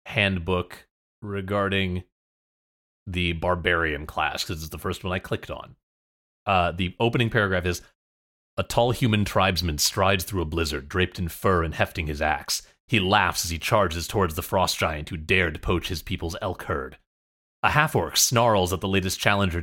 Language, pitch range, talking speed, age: English, 85-105 Hz, 175 wpm, 30-49